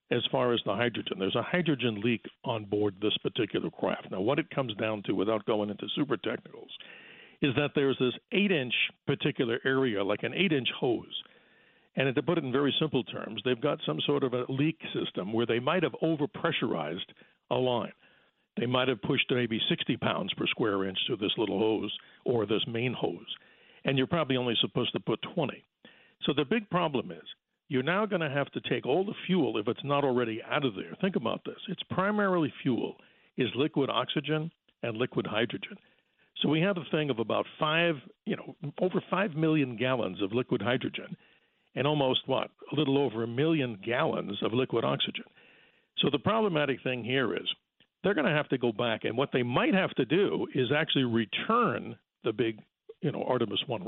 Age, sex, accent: 60-79, male, American